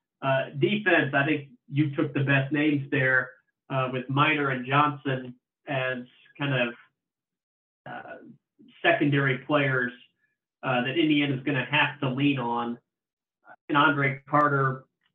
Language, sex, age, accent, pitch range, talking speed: English, male, 40-59, American, 135-160 Hz, 135 wpm